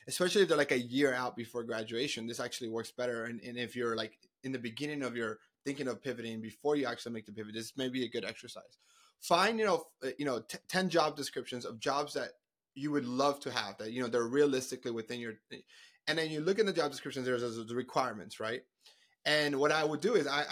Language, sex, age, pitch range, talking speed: English, male, 30-49, 120-165 Hz, 240 wpm